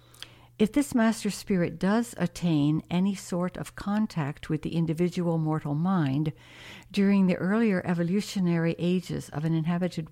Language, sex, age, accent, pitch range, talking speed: English, female, 60-79, American, 155-190 Hz, 135 wpm